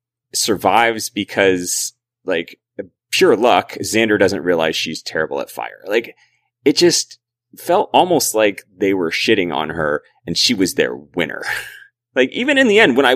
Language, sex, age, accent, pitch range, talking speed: English, male, 30-49, American, 90-120 Hz, 160 wpm